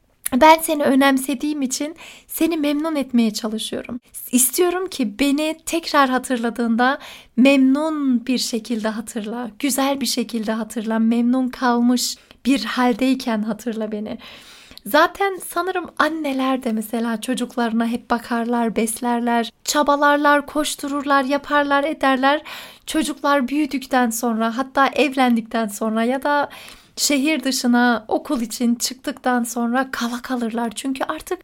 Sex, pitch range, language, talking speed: female, 235-290 Hz, Turkish, 110 wpm